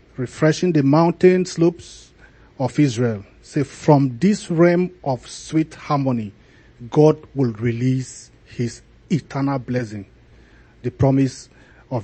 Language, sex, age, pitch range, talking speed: English, male, 40-59, 120-150 Hz, 110 wpm